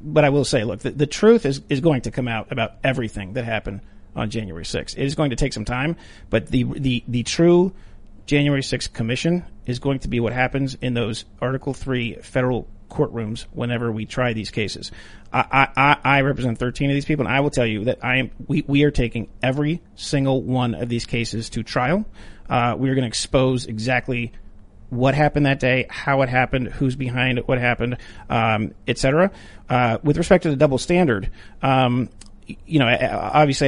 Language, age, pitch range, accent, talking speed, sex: English, 40-59, 115-140 Hz, American, 205 wpm, male